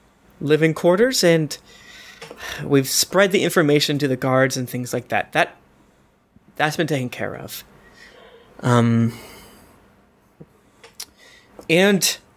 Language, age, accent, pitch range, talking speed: English, 20-39, American, 140-190 Hz, 105 wpm